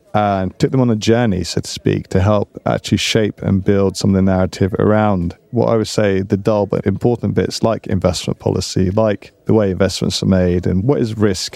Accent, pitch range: British, 95-115 Hz